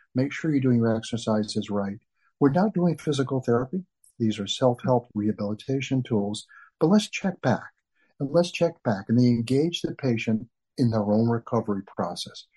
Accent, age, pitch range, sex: American, 50-69, 105-135 Hz, male